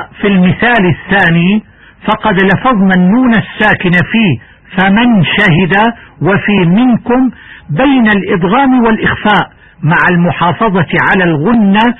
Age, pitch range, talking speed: 60-79, 180-230 Hz, 95 wpm